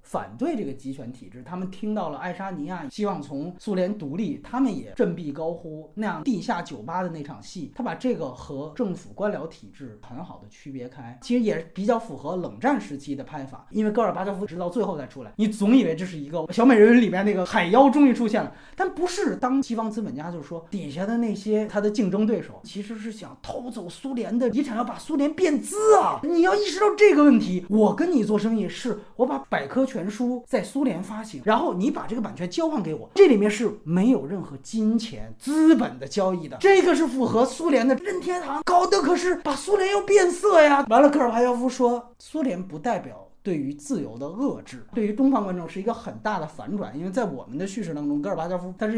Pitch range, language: 155-250 Hz, Chinese